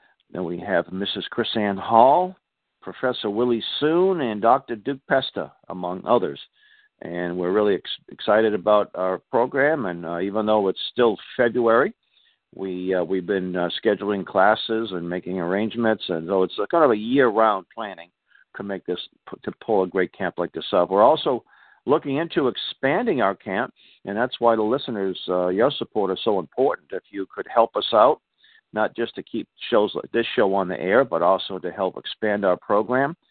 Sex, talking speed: male, 185 wpm